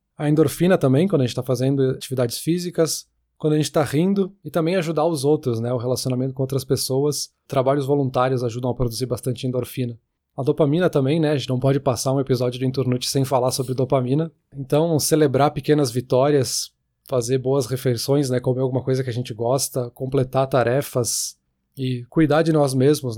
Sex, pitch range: male, 130-155 Hz